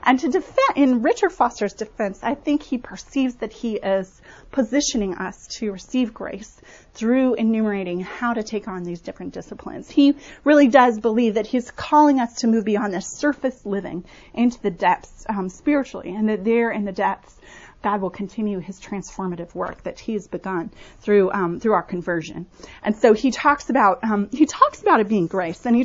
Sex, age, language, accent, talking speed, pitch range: female, 30-49, English, American, 190 wpm, 195-250 Hz